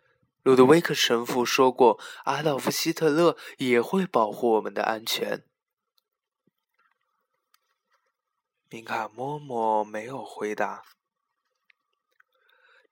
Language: Chinese